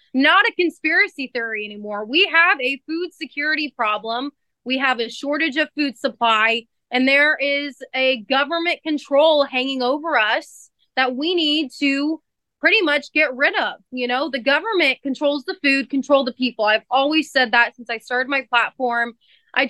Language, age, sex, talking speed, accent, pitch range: English, 20-39, female, 170 wpm, American, 250-305 Hz